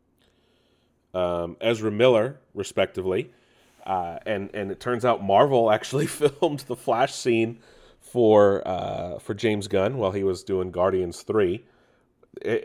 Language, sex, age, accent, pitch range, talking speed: English, male, 30-49, American, 95-115 Hz, 135 wpm